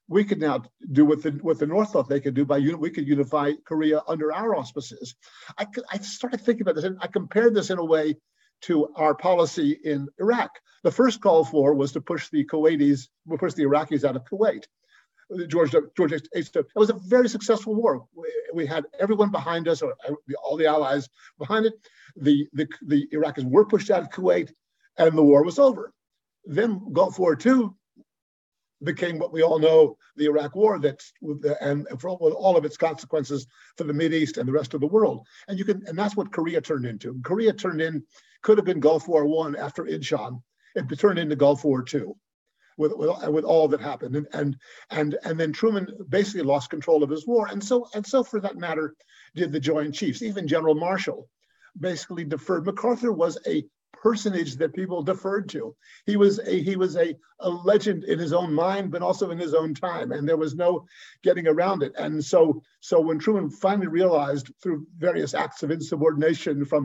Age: 50-69